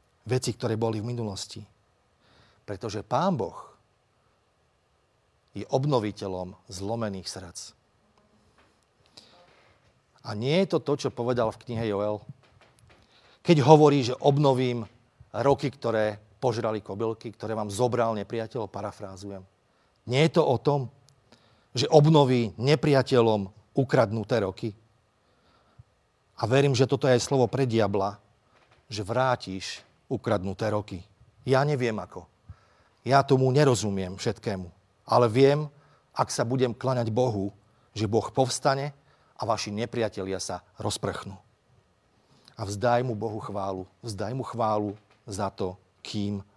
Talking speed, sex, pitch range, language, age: 115 wpm, male, 100-125 Hz, Slovak, 40-59